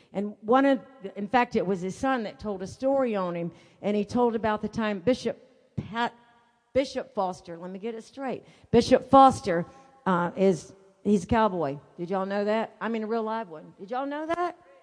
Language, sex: English, female